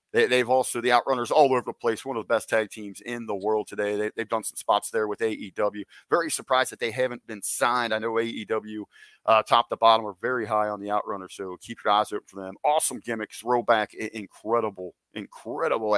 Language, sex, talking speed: English, male, 220 wpm